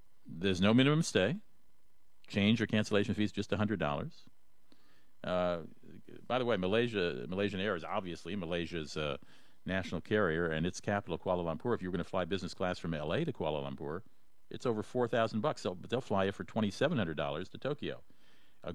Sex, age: male, 50-69